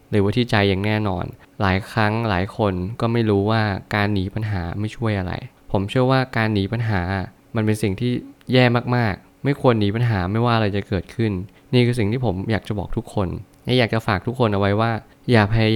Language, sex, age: Thai, male, 20-39